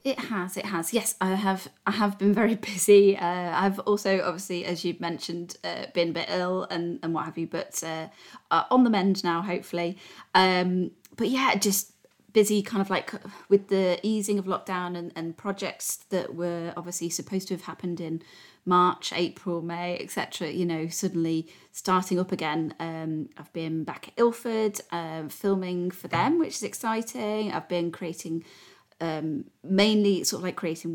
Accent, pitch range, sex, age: British, 170-200 Hz, female, 30-49